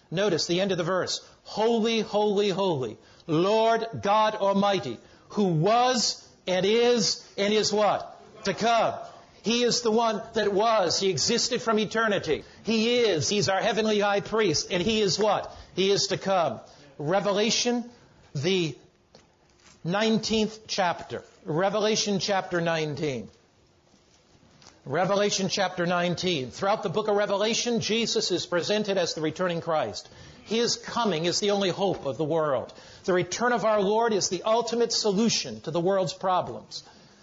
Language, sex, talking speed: English, male, 145 wpm